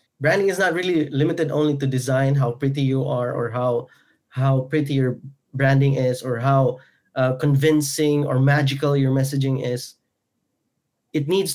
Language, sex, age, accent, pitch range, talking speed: Filipino, male, 20-39, native, 135-155 Hz, 155 wpm